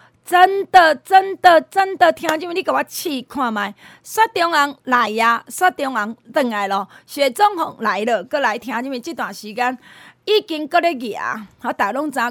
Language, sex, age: Chinese, female, 30-49